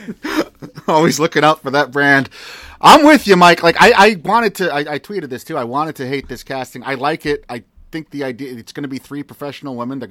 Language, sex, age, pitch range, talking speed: English, male, 30-49, 115-145 Hz, 245 wpm